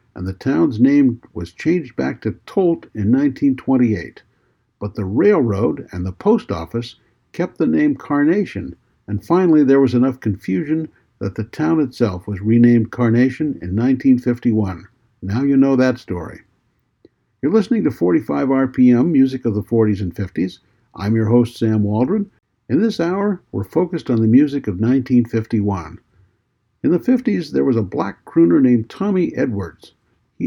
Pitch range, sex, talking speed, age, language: 110-155 Hz, male, 160 wpm, 60-79, English